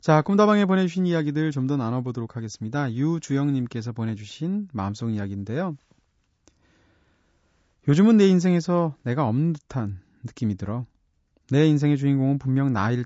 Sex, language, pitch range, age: male, Korean, 100-150 Hz, 30-49